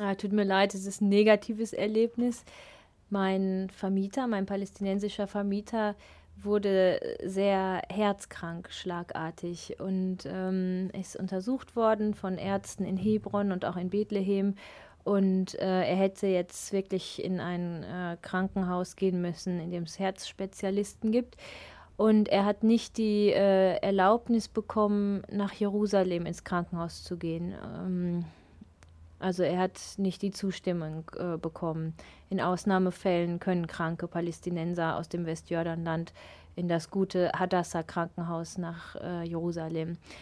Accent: German